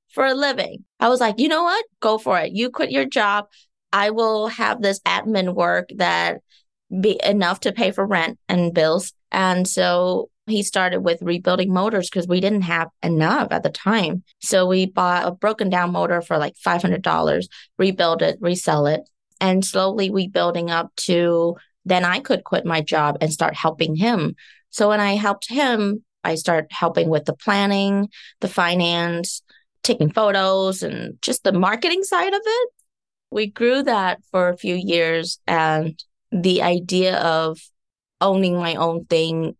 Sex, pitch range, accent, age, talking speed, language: female, 165-200 Hz, American, 20-39, 170 wpm, English